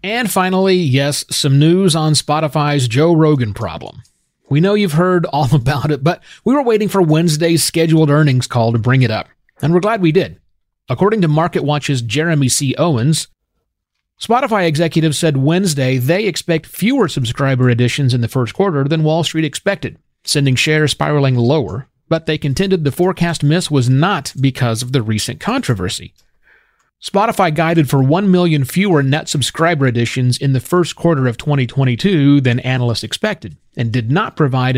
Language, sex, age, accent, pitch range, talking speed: English, male, 30-49, American, 125-165 Hz, 165 wpm